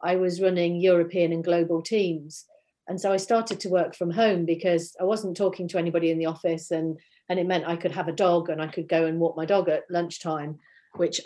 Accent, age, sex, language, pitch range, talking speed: British, 40-59, female, English, 175-205 Hz, 235 wpm